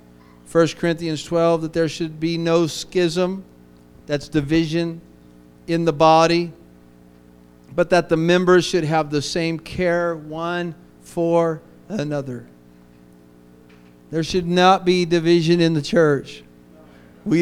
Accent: American